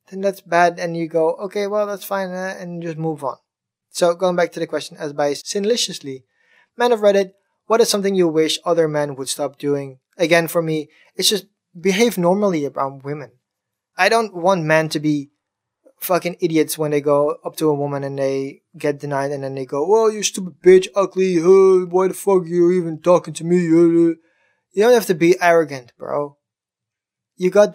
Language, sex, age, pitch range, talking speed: English, male, 20-39, 145-190 Hz, 195 wpm